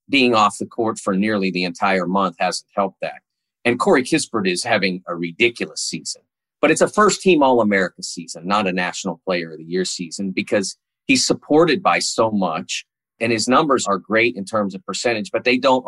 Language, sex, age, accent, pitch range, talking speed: English, male, 40-59, American, 95-125 Hz, 205 wpm